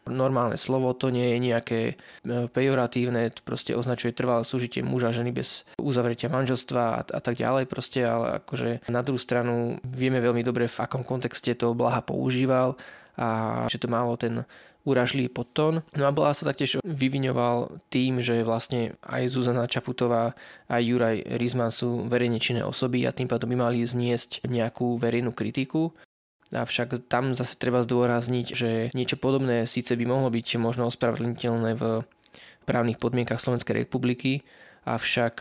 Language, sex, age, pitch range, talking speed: Slovak, male, 20-39, 120-130 Hz, 155 wpm